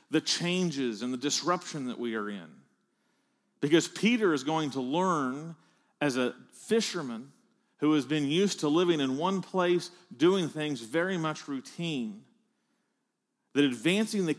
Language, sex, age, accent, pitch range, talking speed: English, male, 40-59, American, 140-190 Hz, 145 wpm